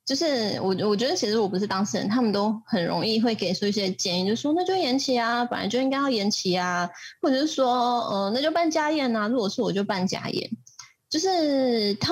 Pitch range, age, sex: 190-255 Hz, 20-39, female